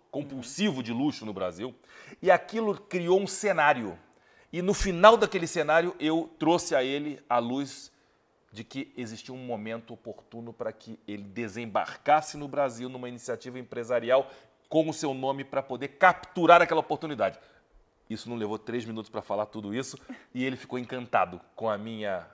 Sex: male